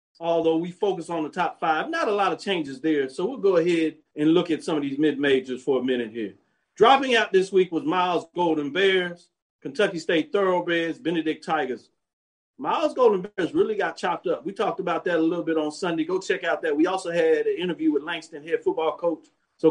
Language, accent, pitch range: English, American, 155-205 Hz